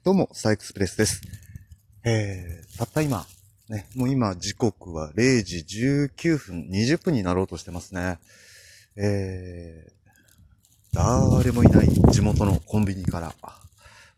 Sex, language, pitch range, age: male, Japanese, 95-120 Hz, 30-49